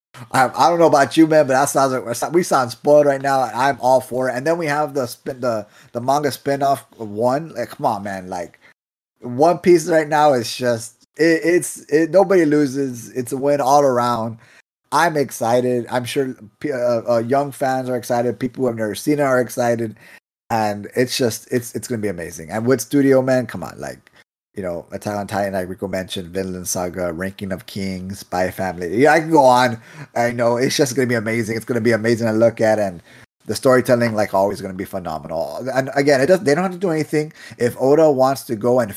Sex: male